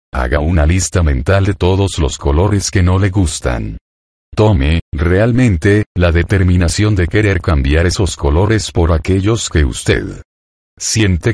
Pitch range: 80-100 Hz